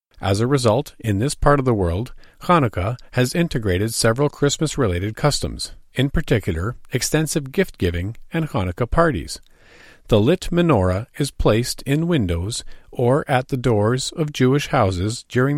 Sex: male